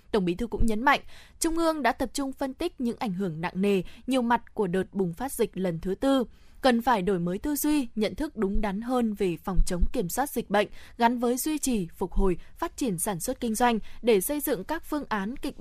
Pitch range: 200-270 Hz